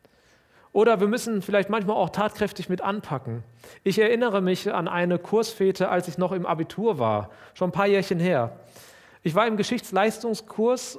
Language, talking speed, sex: German, 165 wpm, male